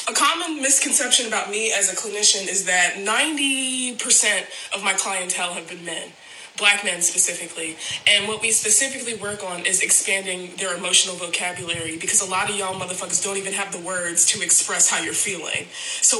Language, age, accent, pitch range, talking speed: English, 20-39, American, 200-270 Hz, 180 wpm